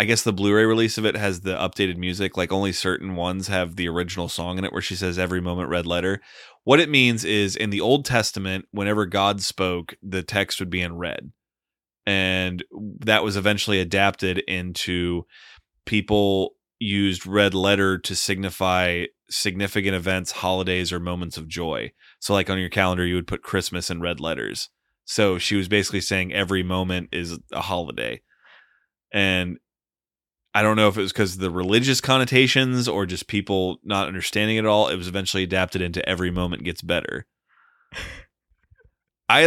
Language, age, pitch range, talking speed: English, 30-49, 90-110 Hz, 175 wpm